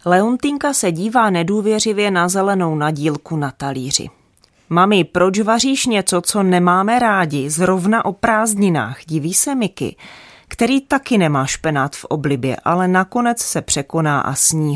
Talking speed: 140 wpm